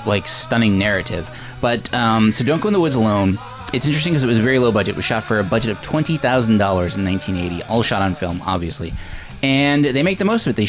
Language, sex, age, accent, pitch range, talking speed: English, male, 20-39, American, 100-130 Hz, 255 wpm